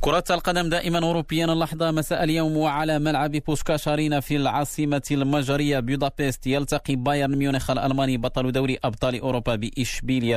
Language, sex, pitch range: Arabic, male, 110-135 Hz